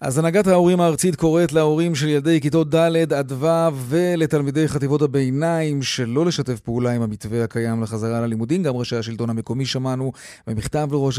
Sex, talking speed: male, 155 wpm